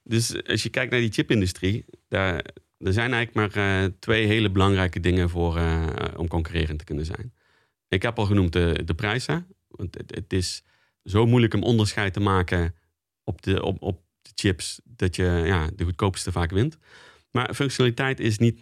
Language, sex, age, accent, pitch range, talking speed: Dutch, male, 30-49, Dutch, 90-110 Hz, 185 wpm